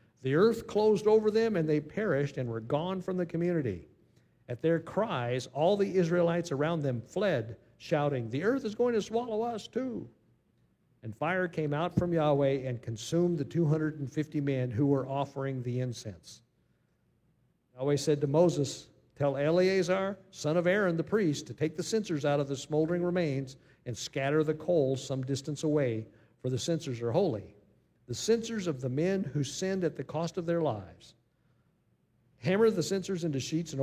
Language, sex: English, male